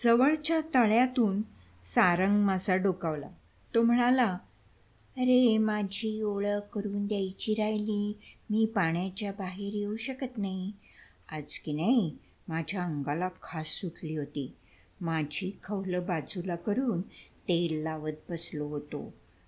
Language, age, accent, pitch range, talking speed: Marathi, 60-79, native, 155-220 Hz, 110 wpm